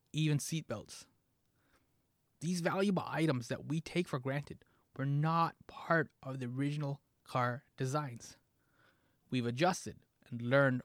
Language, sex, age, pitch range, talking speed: English, male, 20-39, 125-165 Hz, 120 wpm